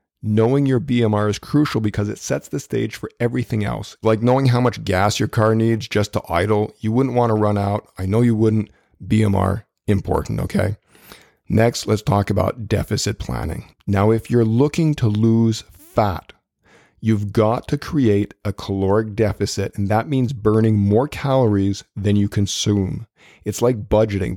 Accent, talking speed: American, 170 wpm